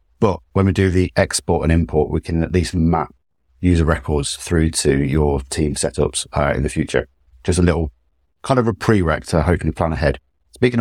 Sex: male